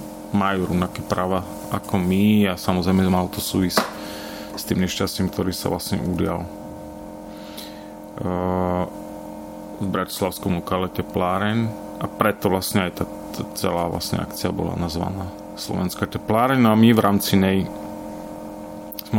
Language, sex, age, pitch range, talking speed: Slovak, male, 30-49, 90-105 Hz, 130 wpm